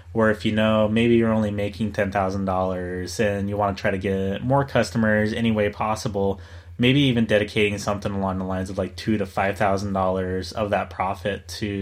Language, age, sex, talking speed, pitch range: English, 20-39, male, 190 wpm, 95-115 Hz